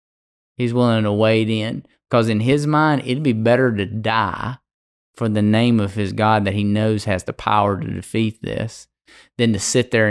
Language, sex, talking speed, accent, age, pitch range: English, male, 195 wpm, American, 20-39, 105-120 Hz